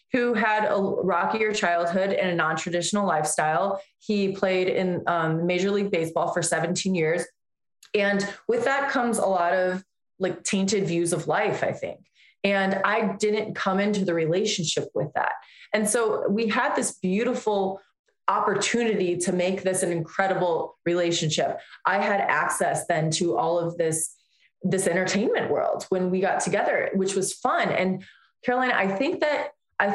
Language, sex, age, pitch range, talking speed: English, female, 20-39, 175-210 Hz, 160 wpm